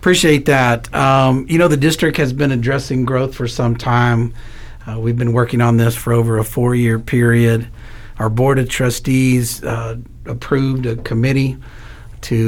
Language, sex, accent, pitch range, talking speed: English, male, American, 115-135 Hz, 165 wpm